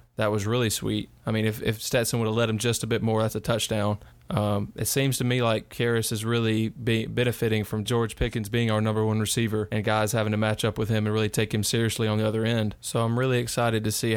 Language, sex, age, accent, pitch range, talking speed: English, male, 20-39, American, 105-115 Hz, 265 wpm